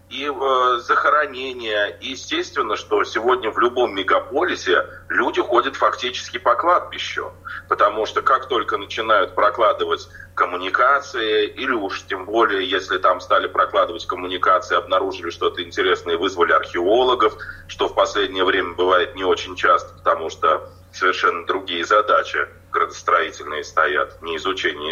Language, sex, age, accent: Russian, male, 30-49, native